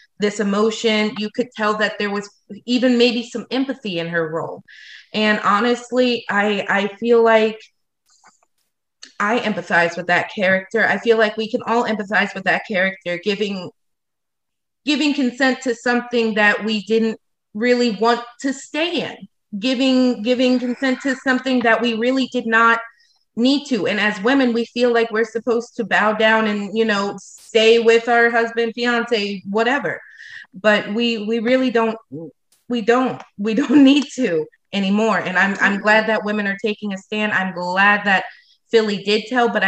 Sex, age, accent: female, 30-49, American